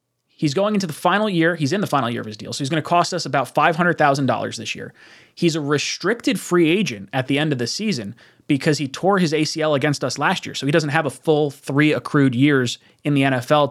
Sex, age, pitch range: male, 20-39, 135-165 Hz